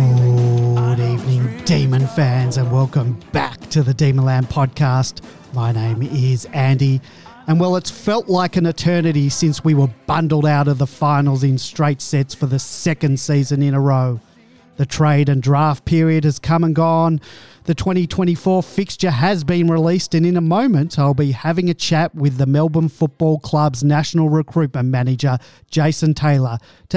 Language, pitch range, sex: English, 135-165 Hz, male